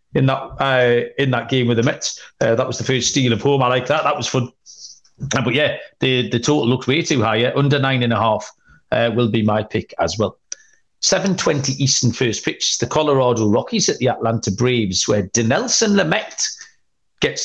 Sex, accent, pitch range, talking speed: male, British, 120-155 Hz, 205 wpm